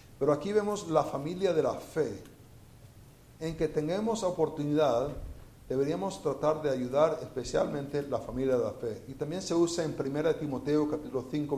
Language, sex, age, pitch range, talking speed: Spanish, male, 50-69, 130-165 Hz, 160 wpm